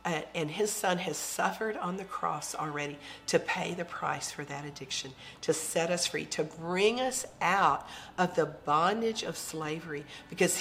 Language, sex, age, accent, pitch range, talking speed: English, female, 50-69, American, 150-190 Hz, 175 wpm